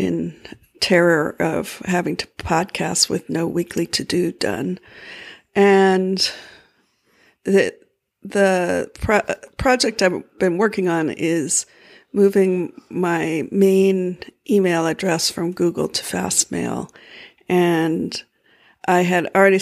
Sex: female